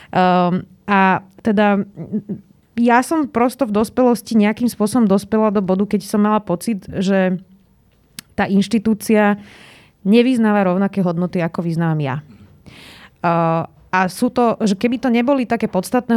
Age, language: 20-39, Slovak